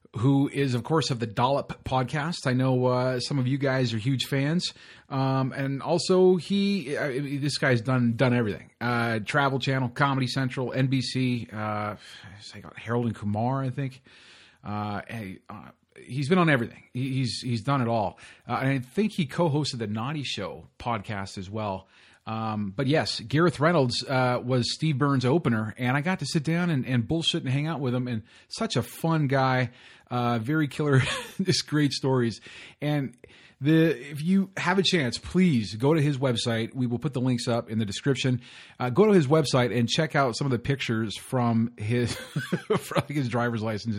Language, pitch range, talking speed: English, 115-145 Hz, 190 wpm